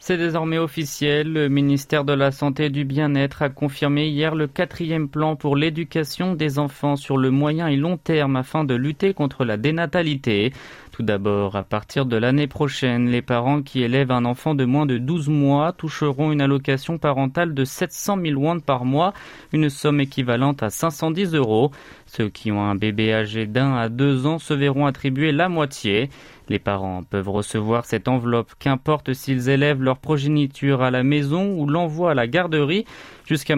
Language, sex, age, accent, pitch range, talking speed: French, male, 30-49, French, 125-155 Hz, 180 wpm